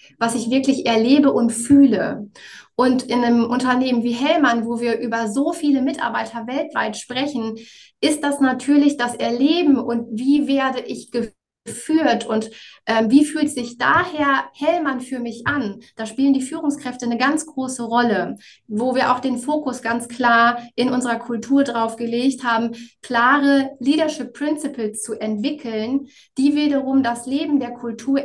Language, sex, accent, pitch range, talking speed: German, female, German, 230-275 Hz, 155 wpm